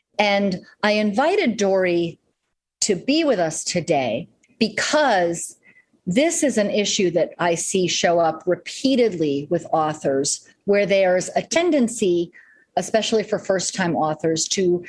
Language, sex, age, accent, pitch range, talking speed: English, female, 40-59, American, 175-225 Hz, 125 wpm